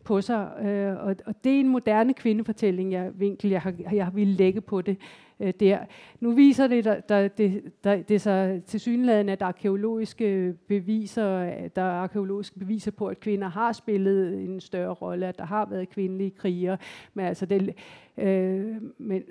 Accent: native